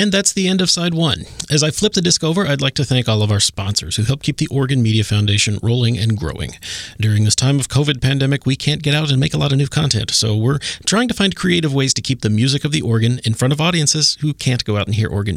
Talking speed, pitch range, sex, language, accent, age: 285 wpm, 110-150 Hz, male, English, American, 30-49